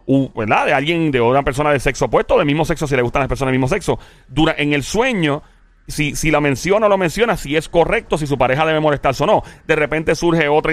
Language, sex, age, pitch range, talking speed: Spanish, male, 30-49, 135-170 Hz, 265 wpm